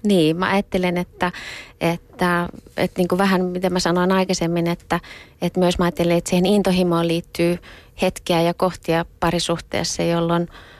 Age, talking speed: 30-49, 155 wpm